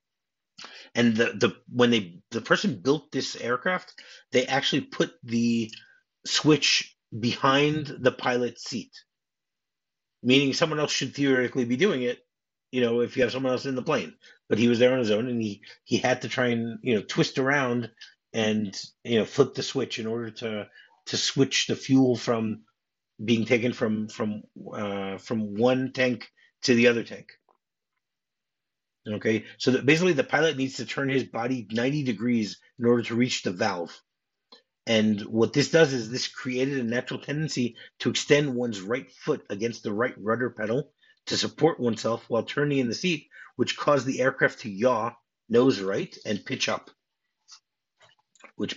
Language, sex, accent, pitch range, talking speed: English, male, American, 110-130 Hz, 170 wpm